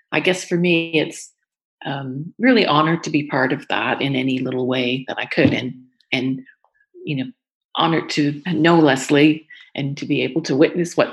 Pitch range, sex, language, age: 145-185 Hz, female, English, 40-59